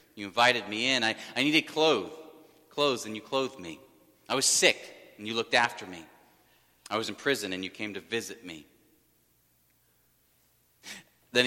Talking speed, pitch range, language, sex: 165 wpm, 105-135 Hz, English, male